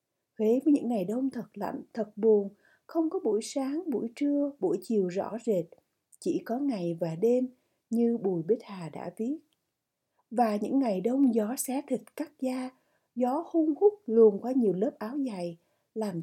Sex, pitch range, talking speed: female, 200-265 Hz, 180 wpm